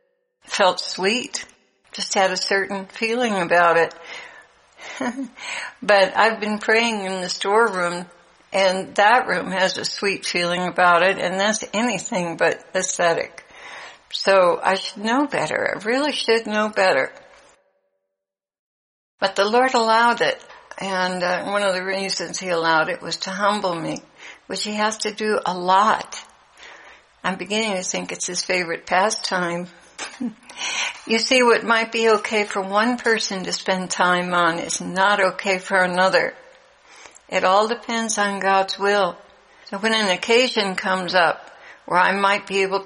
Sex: female